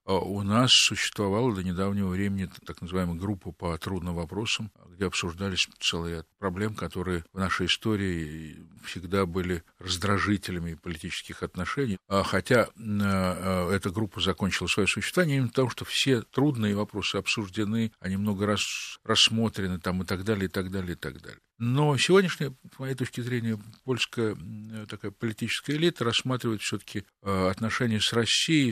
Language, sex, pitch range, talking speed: Russian, male, 90-115 Hz, 140 wpm